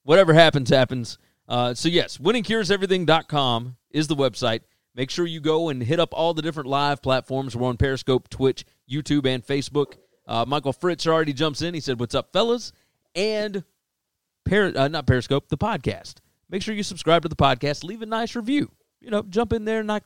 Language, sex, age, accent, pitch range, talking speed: English, male, 30-49, American, 130-175 Hz, 190 wpm